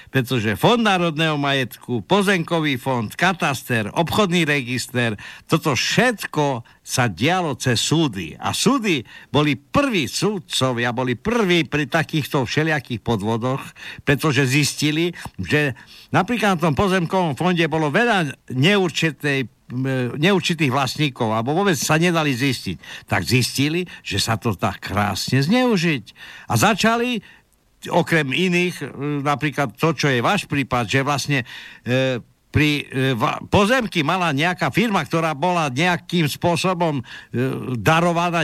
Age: 60-79